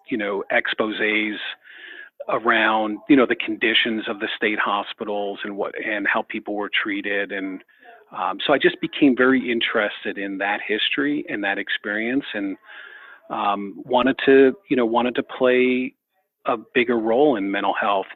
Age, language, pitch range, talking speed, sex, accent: 40-59, English, 105-150 Hz, 160 wpm, male, American